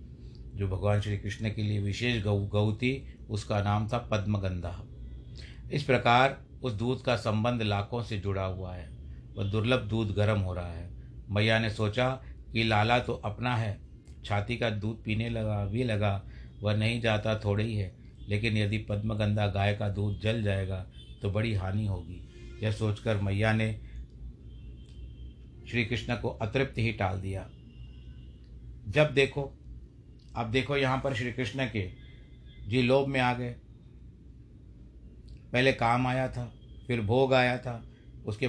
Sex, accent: male, native